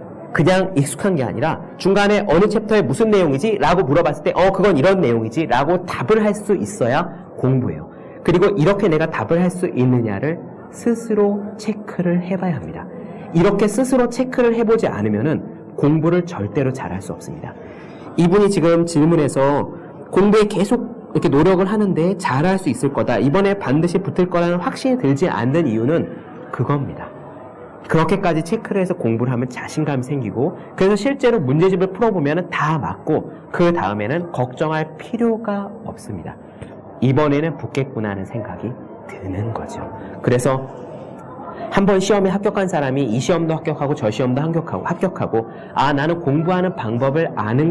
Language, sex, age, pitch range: Korean, male, 40-59, 140-200 Hz